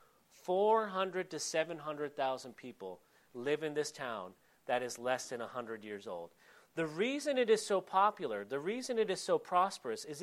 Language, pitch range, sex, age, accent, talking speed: English, 150-200 Hz, male, 40-59, American, 170 wpm